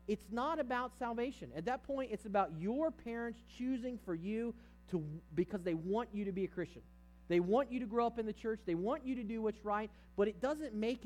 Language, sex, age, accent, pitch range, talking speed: English, male, 40-59, American, 175-245 Hz, 235 wpm